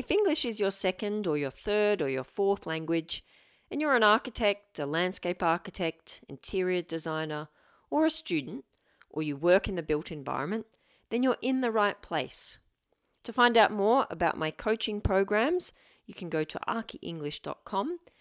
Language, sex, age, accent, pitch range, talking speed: English, female, 40-59, Australian, 155-220 Hz, 165 wpm